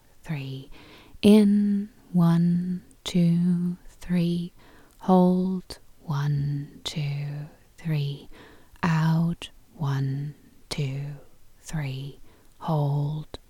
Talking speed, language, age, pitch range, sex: 60 wpm, English, 30-49, 145-175 Hz, female